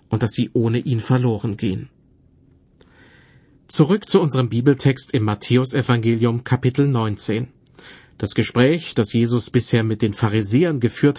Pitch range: 115-140 Hz